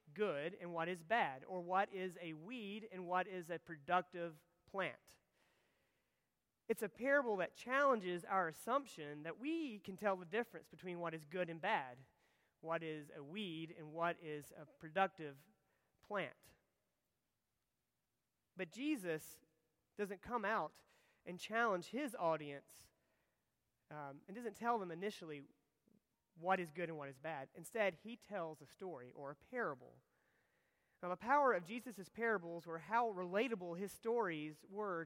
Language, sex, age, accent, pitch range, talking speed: English, male, 30-49, American, 165-215 Hz, 150 wpm